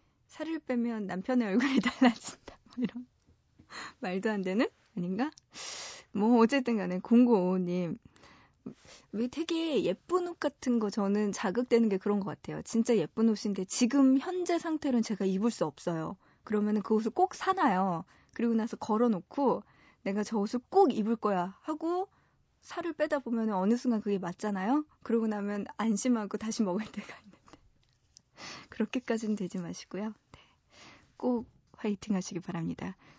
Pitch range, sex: 195-250 Hz, female